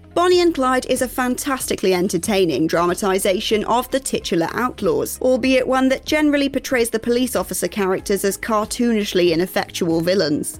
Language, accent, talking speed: English, British, 140 wpm